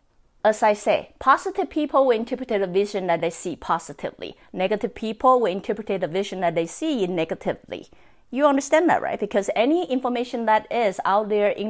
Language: English